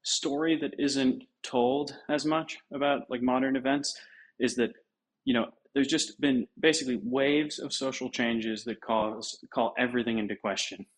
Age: 20-39